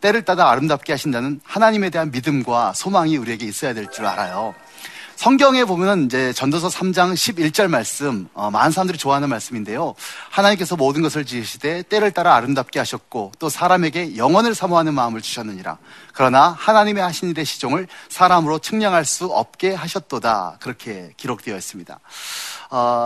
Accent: native